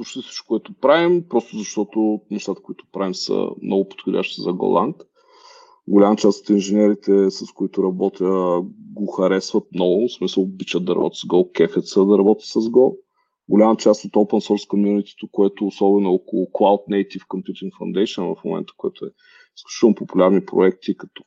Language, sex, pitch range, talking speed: Bulgarian, male, 100-125 Hz, 160 wpm